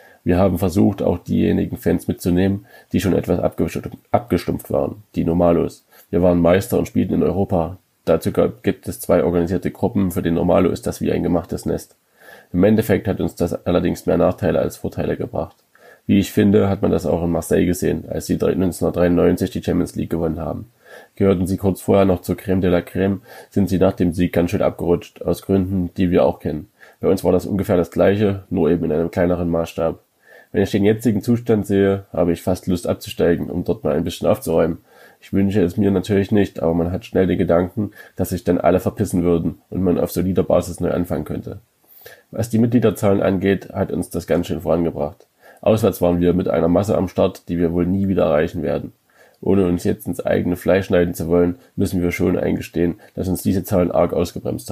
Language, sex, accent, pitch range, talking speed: German, male, German, 85-100 Hz, 205 wpm